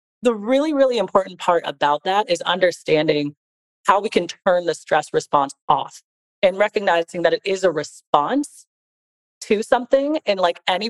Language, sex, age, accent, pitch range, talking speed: English, female, 30-49, American, 165-240 Hz, 160 wpm